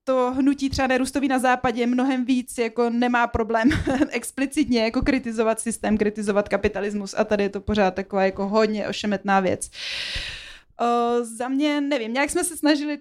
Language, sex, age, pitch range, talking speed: Slovak, female, 20-39, 220-250 Hz, 165 wpm